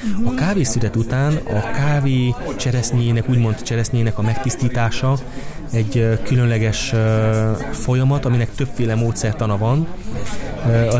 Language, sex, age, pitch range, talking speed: Hungarian, male, 20-39, 115-130 Hz, 100 wpm